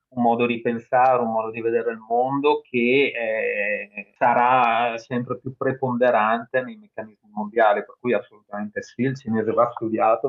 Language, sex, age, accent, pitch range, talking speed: Italian, male, 30-49, native, 110-130 Hz, 165 wpm